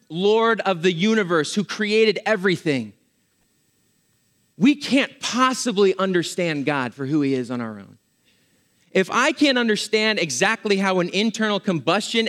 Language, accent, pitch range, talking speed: English, American, 175-225 Hz, 135 wpm